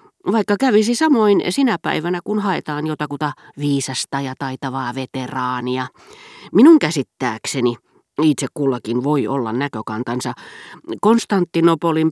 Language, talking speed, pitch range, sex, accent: Finnish, 100 wpm, 125-190 Hz, female, native